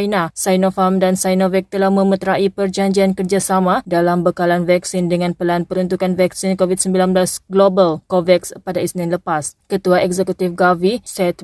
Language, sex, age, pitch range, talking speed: Malay, female, 20-39, 180-195 Hz, 130 wpm